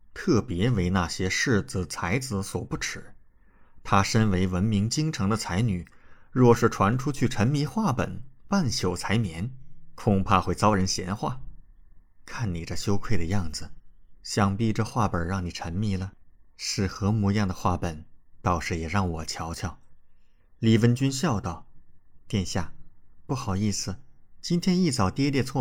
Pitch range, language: 90-115 Hz, Chinese